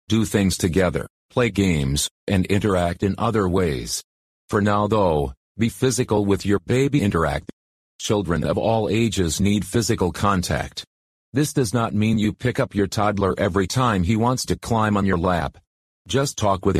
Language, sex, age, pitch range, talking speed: English, male, 40-59, 90-110 Hz, 170 wpm